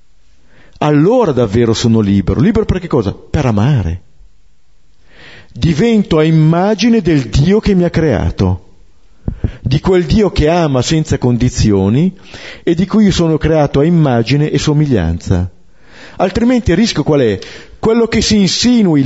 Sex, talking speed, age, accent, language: male, 140 wpm, 50-69, native, Italian